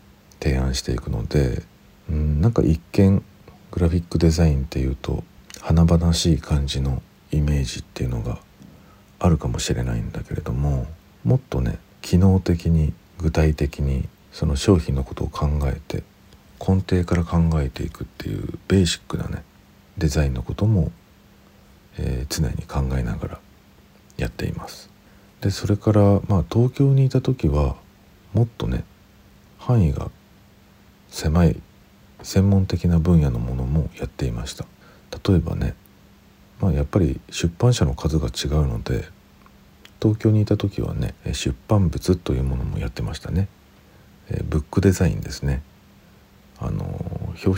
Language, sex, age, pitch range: Japanese, male, 50-69, 75-100 Hz